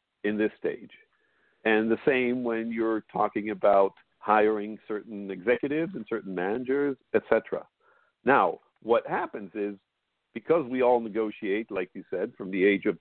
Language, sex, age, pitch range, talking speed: English, male, 50-69, 105-140 Hz, 150 wpm